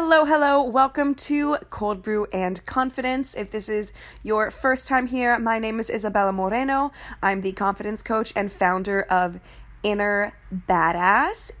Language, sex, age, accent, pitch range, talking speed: English, female, 20-39, American, 195-255 Hz, 150 wpm